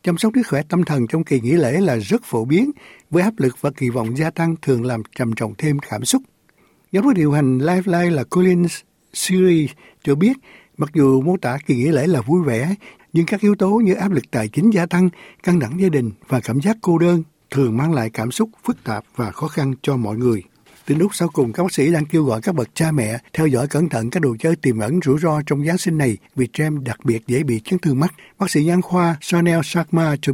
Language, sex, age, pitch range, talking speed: Vietnamese, male, 60-79, 130-175 Hz, 255 wpm